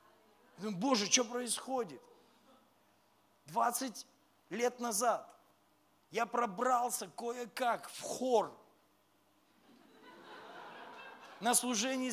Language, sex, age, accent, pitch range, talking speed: Russian, male, 40-59, native, 215-255 Hz, 70 wpm